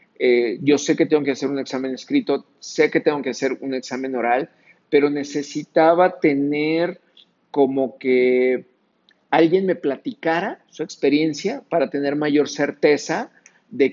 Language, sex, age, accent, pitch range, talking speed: Spanish, male, 50-69, Mexican, 135-165 Hz, 140 wpm